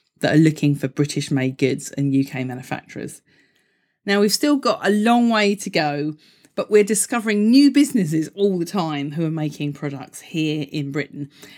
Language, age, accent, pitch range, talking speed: English, 40-59, British, 145-205 Hz, 170 wpm